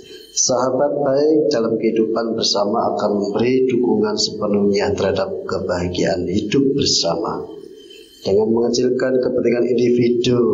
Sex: male